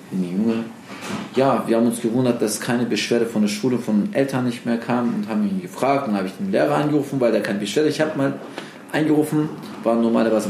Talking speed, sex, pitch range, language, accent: 225 wpm, male, 105-125 Hz, German, German